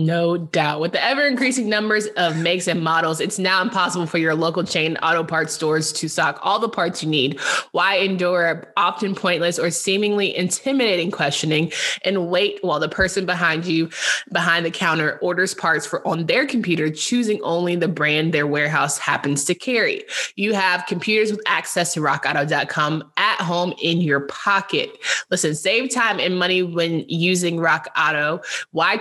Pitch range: 160-190 Hz